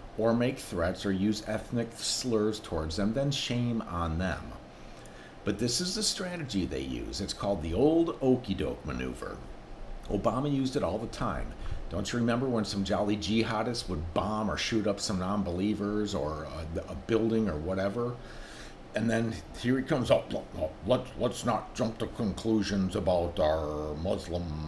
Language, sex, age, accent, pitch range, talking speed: English, male, 50-69, American, 100-145 Hz, 165 wpm